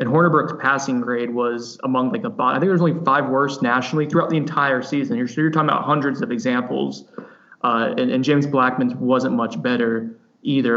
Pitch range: 130-155 Hz